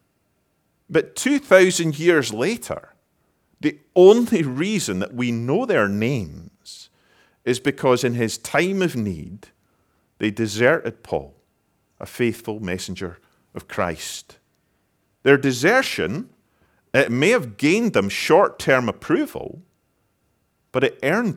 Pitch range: 95-135 Hz